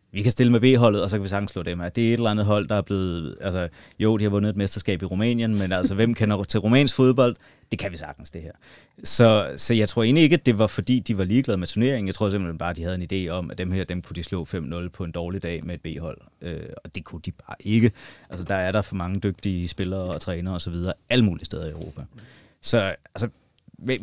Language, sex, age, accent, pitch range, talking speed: Danish, male, 30-49, native, 85-110 Hz, 275 wpm